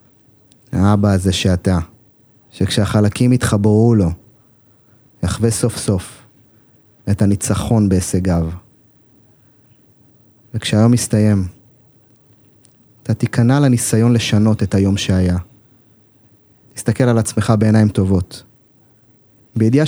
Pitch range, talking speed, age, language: 105-125 Hz, 80 wpm, 30-49, Hebrew